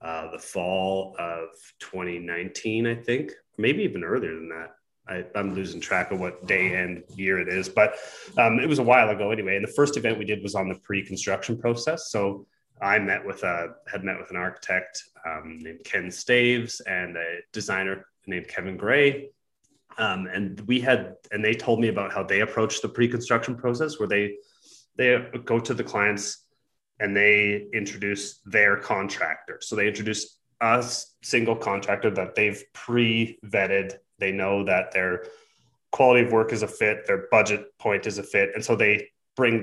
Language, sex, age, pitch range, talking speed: English, male, 30-49, 95-120 Hz, 175 wpm